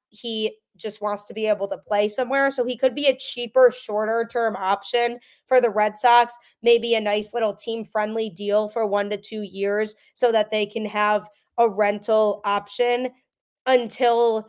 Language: English